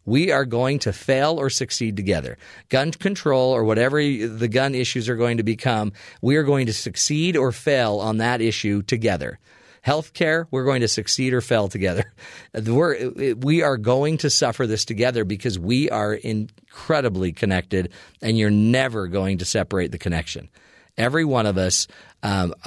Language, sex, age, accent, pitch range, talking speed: English, male, 40-59, American, 105-135 Hz, 170 wpm